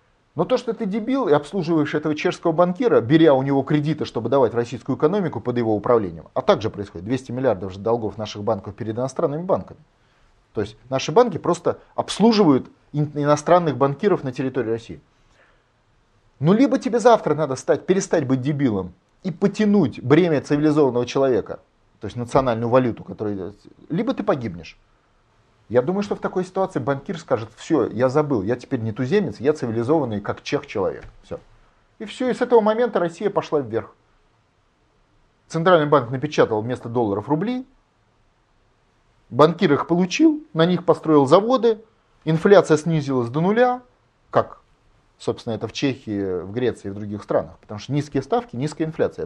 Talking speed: 155 wpm